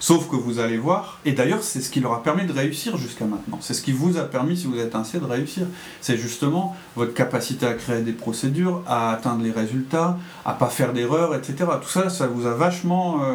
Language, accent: French, French